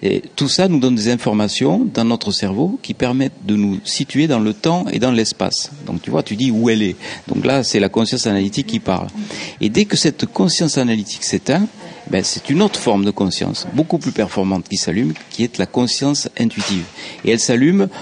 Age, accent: 50-69, French